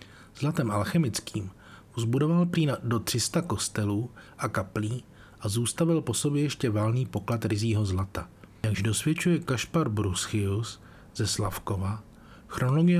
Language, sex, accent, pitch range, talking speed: Czech, male, native, 105-135 Hz, 115 wpm